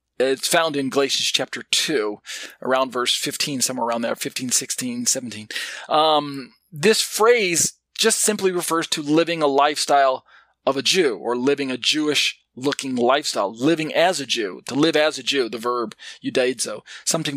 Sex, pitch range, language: male, 130-180 Hz, English